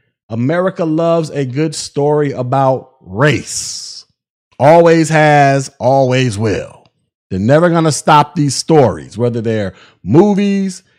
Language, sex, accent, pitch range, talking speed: English, male, American, 140-185 Hz, 115 wpm